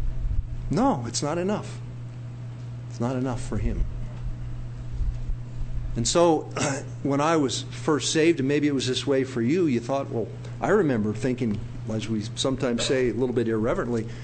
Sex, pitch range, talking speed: male, 115-130 Hz, 165 wpm